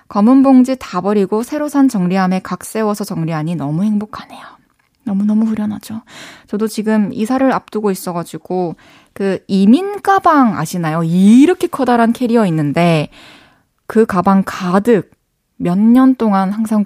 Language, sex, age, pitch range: Korean, female, 20-39, 185-250 Hz